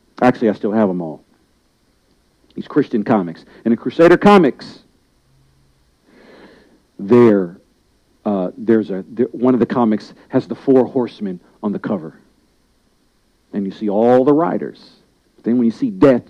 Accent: American